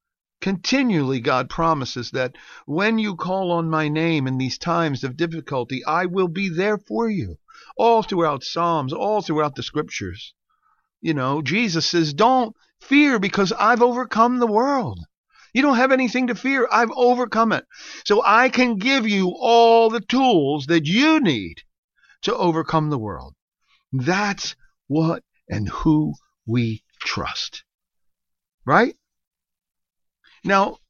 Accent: American